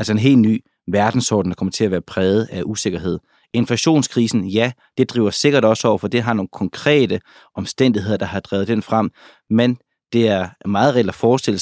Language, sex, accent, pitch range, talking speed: Danish, male, native, 95-115 Hz, 195 wpm